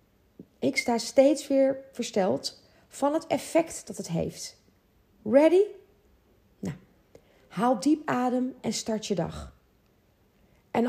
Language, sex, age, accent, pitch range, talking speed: Dutch, female, 40-59, Dutch, 185-265 Hz, 115 wpm